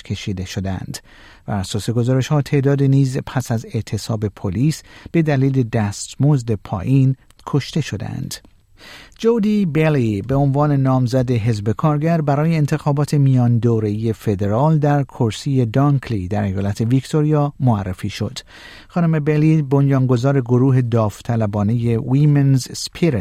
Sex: male